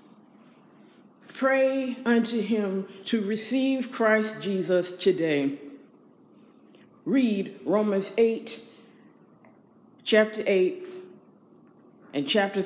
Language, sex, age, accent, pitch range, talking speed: English, female, 50-69, American, 185-235 Hz, 70 wpm